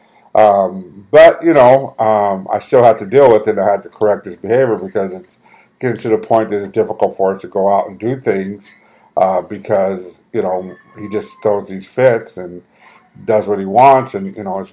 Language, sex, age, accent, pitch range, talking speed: English, male, 50-69, American, 100-120 Hz, 215 wpm